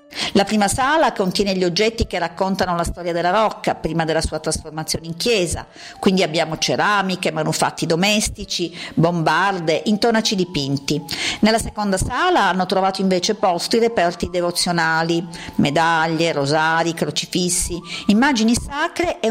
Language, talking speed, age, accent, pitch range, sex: Italian, 130 wpm, 50-69, native, 175-230 Hz, female